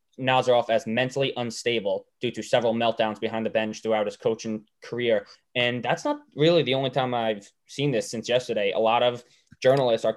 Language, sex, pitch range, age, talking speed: English, male, 115-130 Hz, 10-29, 190 wpm